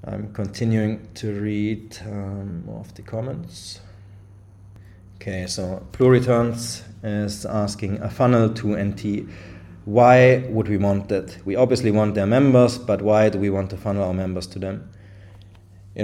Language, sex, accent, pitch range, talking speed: English, male, German, 100-115 Hz, 145 wpm